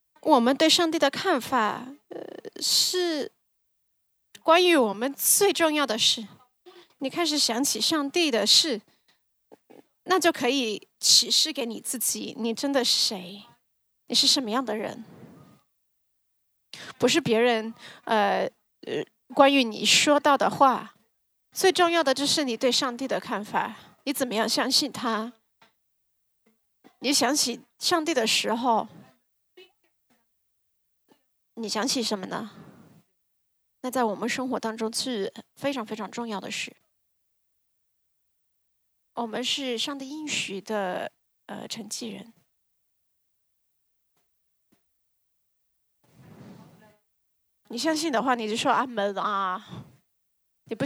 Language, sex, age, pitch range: English, female, 30-49, 215-285 Hz